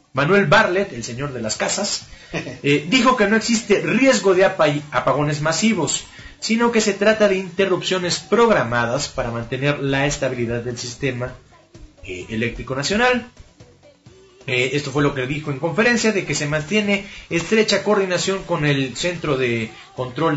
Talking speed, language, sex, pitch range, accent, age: 150 wpm, Spanish, male, 135-195 Hz, Mexican, 30-49